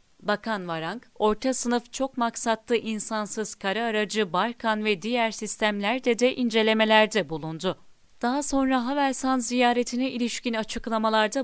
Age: 40-59